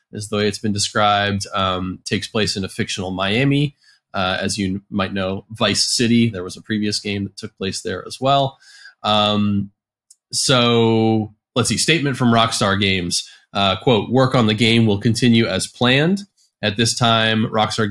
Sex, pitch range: male, 100-130 Hz